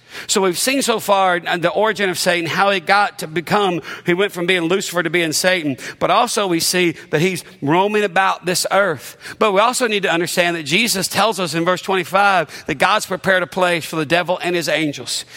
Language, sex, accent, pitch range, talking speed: English, male, American, 160-190 Hz, 220 wpm